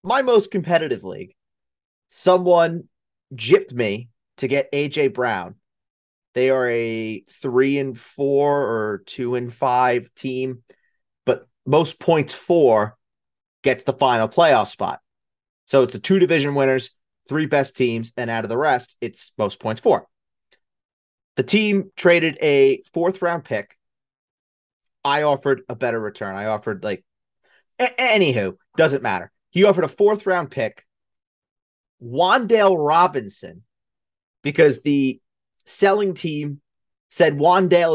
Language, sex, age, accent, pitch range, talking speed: English, male, 30-49, American, 120-175 Hz, 125 wpm